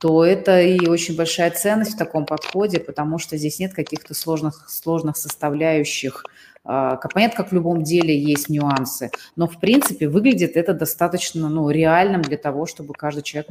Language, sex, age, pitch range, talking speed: Russian, female, 30-49, 155-200 Hz, 165 wpm